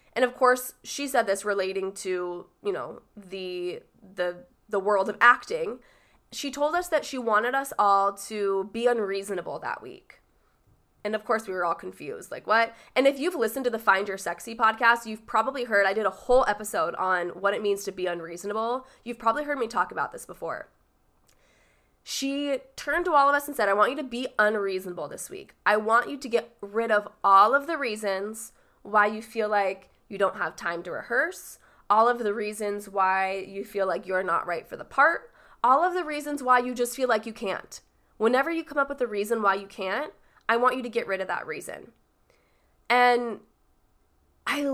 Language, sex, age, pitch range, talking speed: English, female, 20-39, 195-255 Hz, 205 wpm